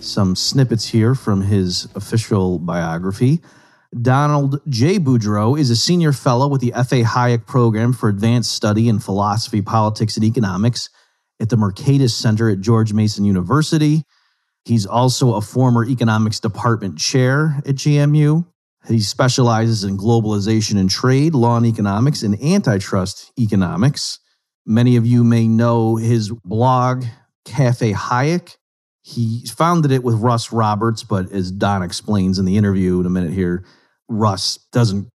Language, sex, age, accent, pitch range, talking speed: English, male, 40-59, American, 100-125 Hz, 145 wpm